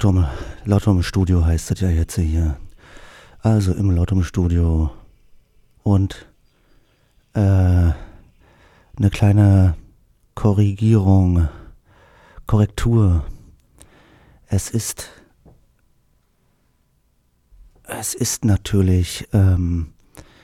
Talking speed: 60 wpm